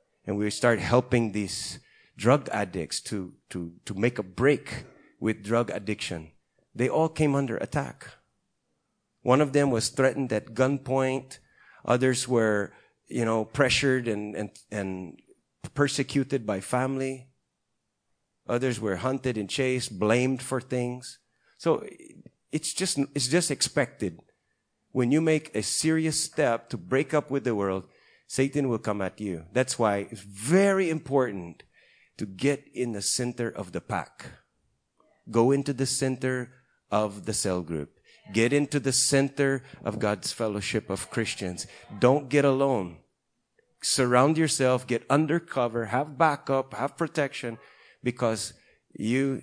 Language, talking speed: English, 135 wpm